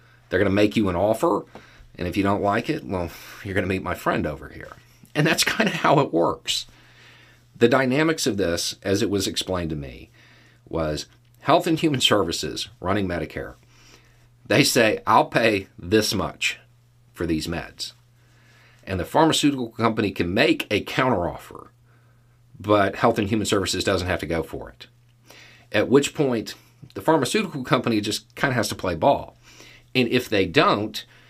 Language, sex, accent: English, male, American